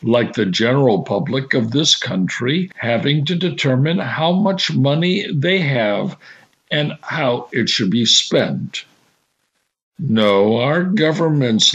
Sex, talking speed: male, 125 wpm